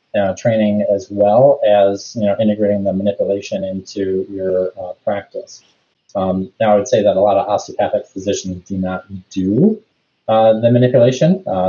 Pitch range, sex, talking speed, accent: 95-110 Hz, male, 160 wpm, American